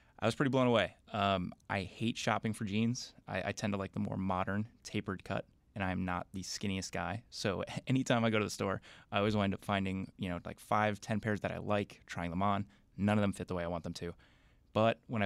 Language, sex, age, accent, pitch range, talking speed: English, male, 20-39, American, 95-110 Hz, 250 wpm